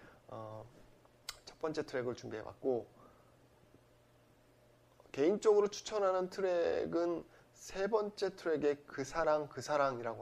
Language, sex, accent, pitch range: Korean, male, native, 120-175 Hz